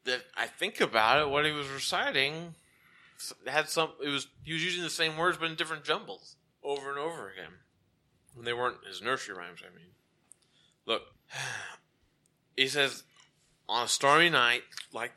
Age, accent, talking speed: 20-39, American, 165 wpm